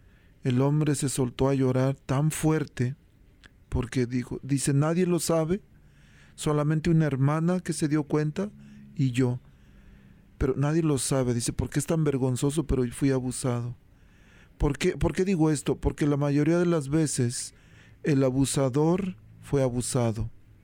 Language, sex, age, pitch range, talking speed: Spanish, male, 40-59, 125-155 Hz, 150 wpm